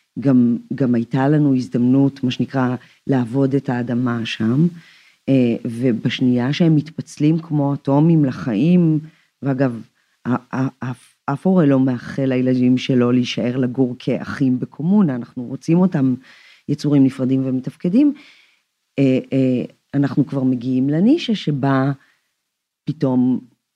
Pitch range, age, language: 130-170 Hz, 40-59, Hebrew